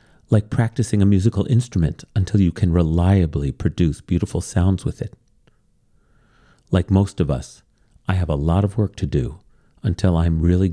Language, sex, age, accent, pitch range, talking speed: English, male, 40-59, American, 90-115 Hz, 160 wpm